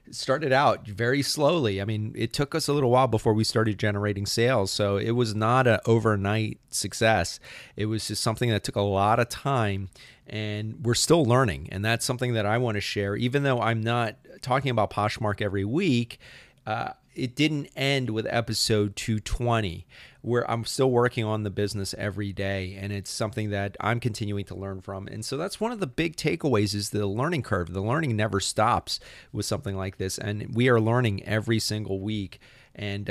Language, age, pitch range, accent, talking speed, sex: English, 30-49, 100-125 Hz, American, 195 wpm, male